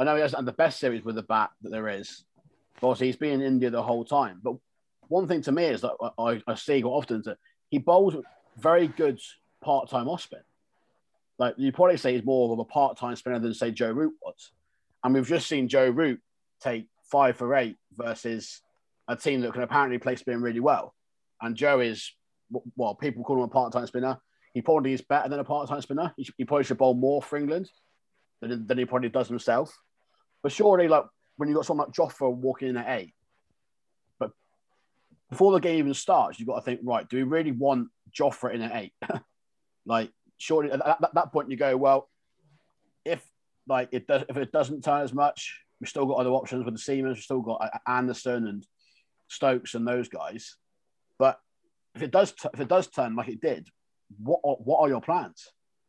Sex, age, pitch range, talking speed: male, 30-49, 125-150 Hz, 210 wpm